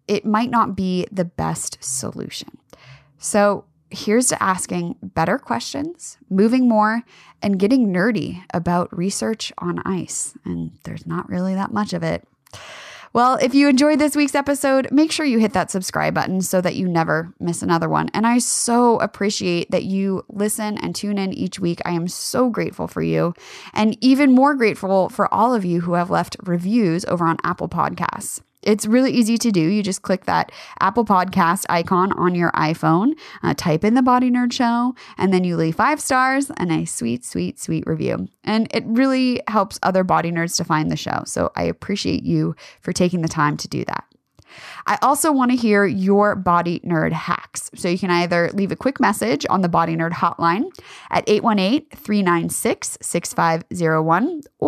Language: English